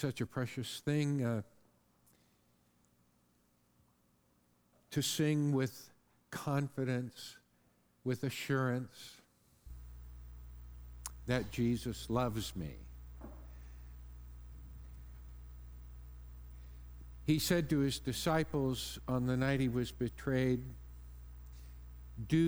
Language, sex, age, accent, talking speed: English, male, 50-69, American, 70 wpm